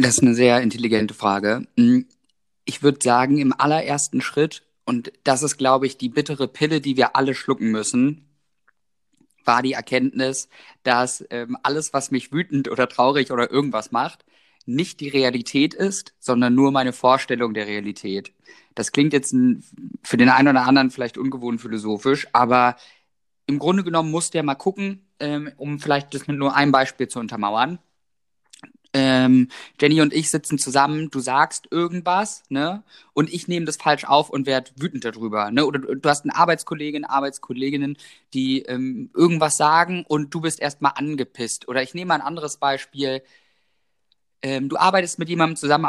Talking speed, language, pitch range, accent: 165 wpm, German, 130-155 Hz, German